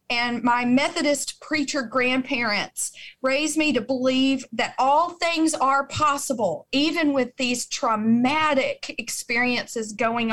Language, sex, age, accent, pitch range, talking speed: English, female, 40-59, American, 250-300 Hz, 115 wpm